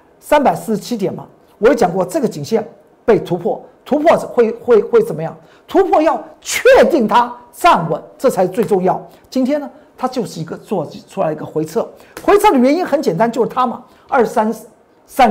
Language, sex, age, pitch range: Chinese, male, 50-69, 175-275 Hz